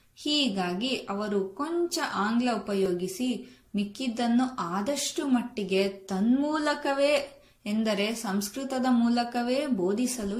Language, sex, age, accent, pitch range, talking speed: Kannada, female, 20-39, native, 195-260 Hz, 75 wpm